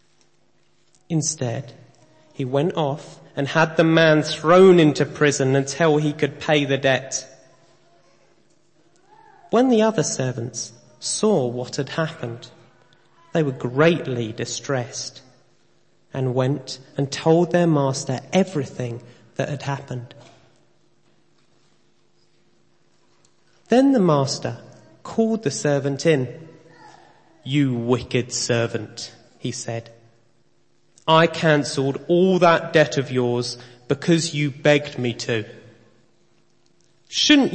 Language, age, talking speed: English, 30-49, 100 wpm